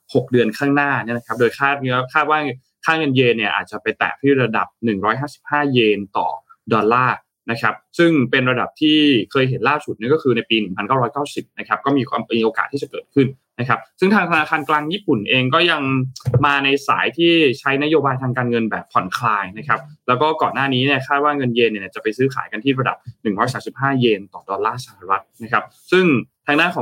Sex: male